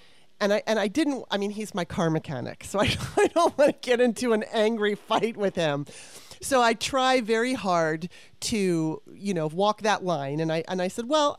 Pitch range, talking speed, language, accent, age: 170-220 Hz, 215 wpm, English, American, 30-49